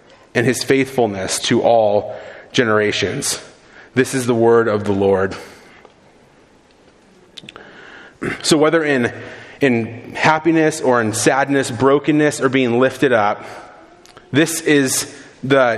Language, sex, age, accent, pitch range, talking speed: English, male, 30-49, American, 120-150 Hz, 110 wpm